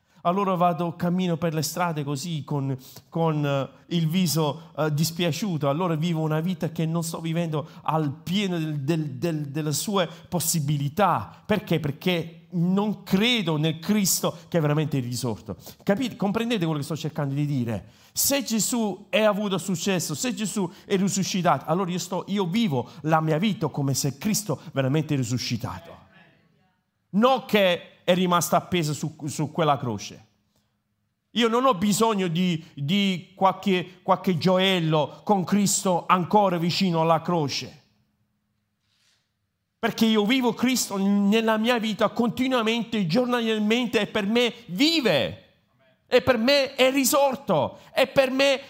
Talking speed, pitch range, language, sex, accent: 145 wpm, 155-210 Hz, Italian, male, native